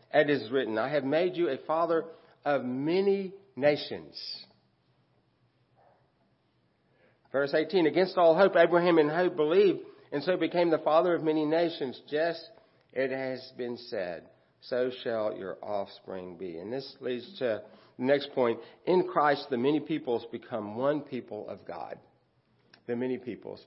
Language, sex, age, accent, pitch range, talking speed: English, male, 60-79, American, 115-165 Hz, 150 wpm